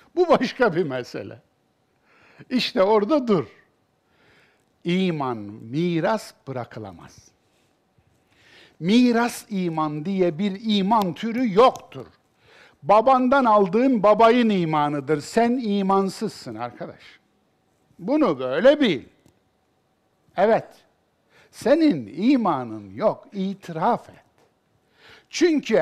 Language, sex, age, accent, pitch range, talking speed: Turkish, male, 60-79, native, 155-245 Hz, 75 wpm